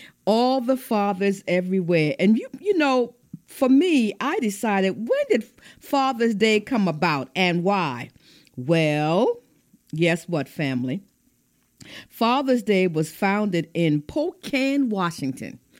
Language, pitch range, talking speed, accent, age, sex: English, 170-255 Hz, 120 wpm, American, 50-69, female